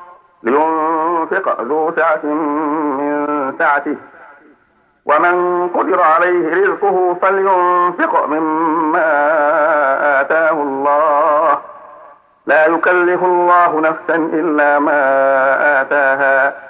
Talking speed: 70 wpm